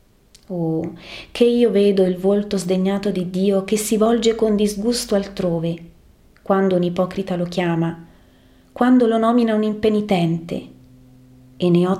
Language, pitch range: Italian, 165-205 Hz